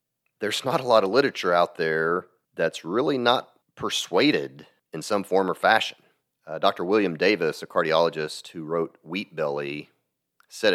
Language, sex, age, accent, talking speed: English, male, 40-59, American, 155 wpm